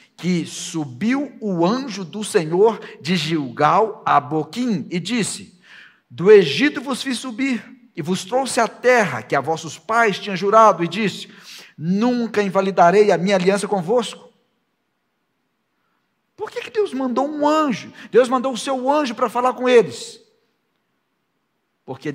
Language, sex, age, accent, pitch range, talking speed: Portuguese, male, 60-79, Brazilian, 140-230 Hz, 140 wpm